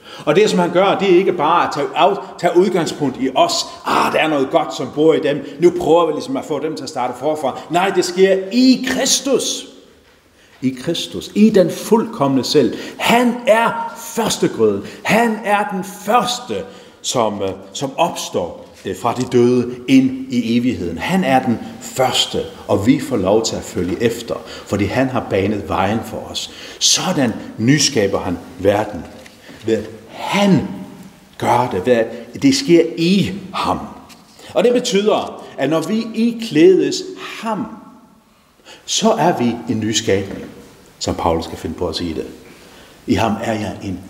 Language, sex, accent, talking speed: Danish, male, native, 165 wpm